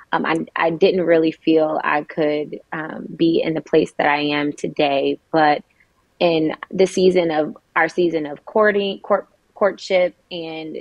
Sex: female